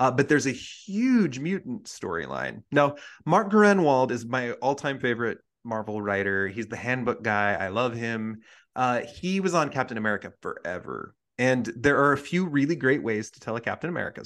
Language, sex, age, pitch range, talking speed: English, male, 30-49, 110-140 Hz, 180 wpm